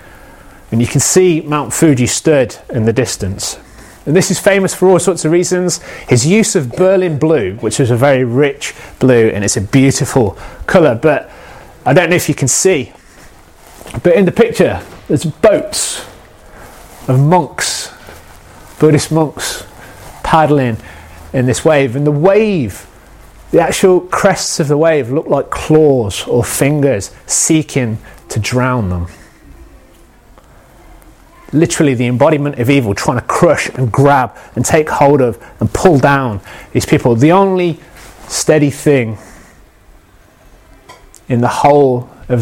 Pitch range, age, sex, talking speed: 115-160 Hz, 30-49, male, 145 wpm